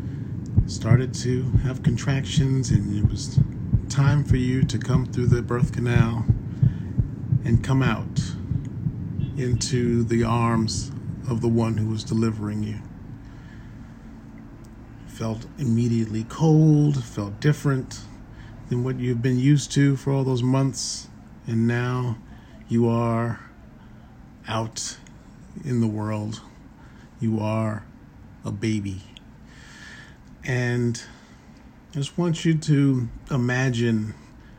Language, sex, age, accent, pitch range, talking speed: English, male, 40-59, American, 115-135 Hz, 110 wpm